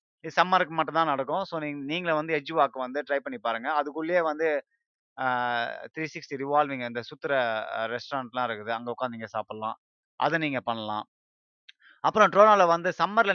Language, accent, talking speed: Tamil, native, 140 wpm